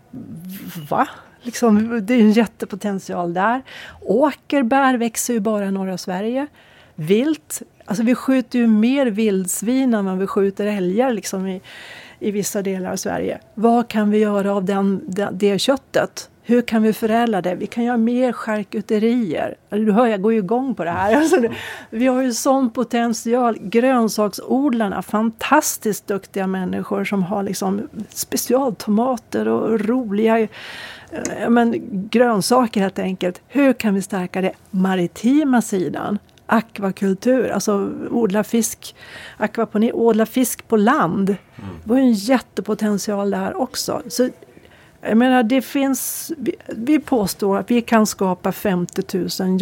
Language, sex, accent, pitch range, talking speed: Swedish, female, native, 195-240 Hz, 140 wpm